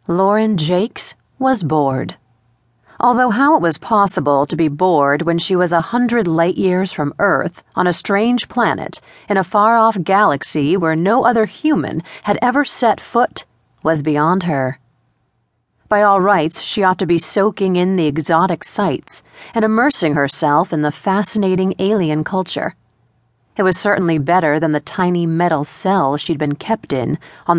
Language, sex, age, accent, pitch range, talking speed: English, female, 30-49, American, 150-205 Hz, 160 wpm